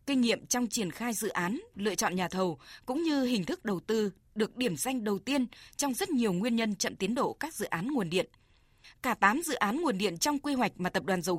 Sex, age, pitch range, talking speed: female, 20-39, 200-260 Hz, 255 wpm